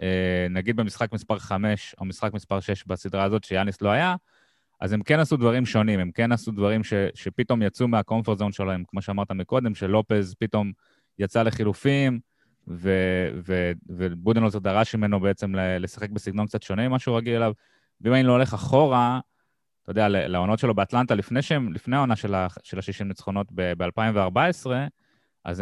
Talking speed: 150 wpm